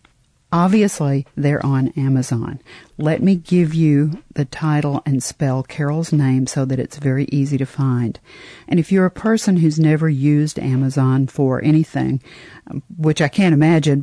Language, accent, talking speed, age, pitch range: English, American, 155 wpm, 50-69, 135-160 Hz